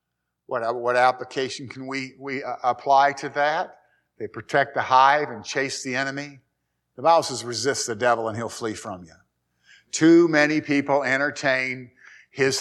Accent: American